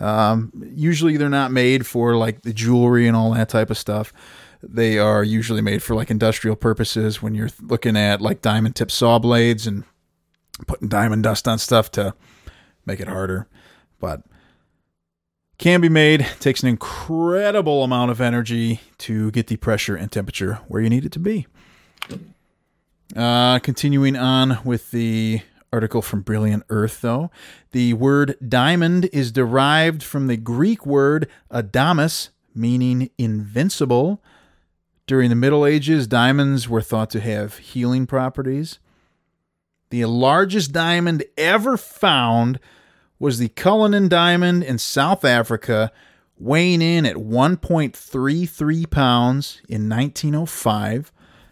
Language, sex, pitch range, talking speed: English, male, 110-140 Hz, 135 wpm